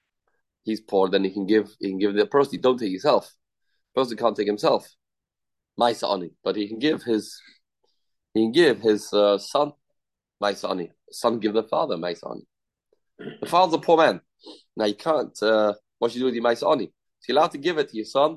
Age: 30-49